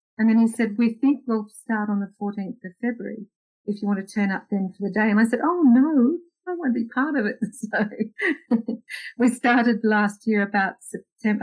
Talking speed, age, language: 215 wpm, 50-69, English